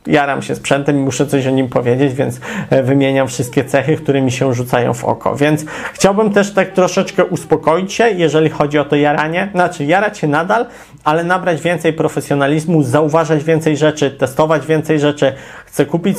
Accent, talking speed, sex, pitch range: native, 175 wpm, male, 140-165 Hz